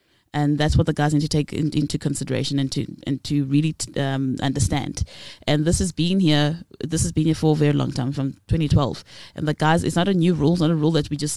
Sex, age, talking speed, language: female, 20-39, 260 wpm, English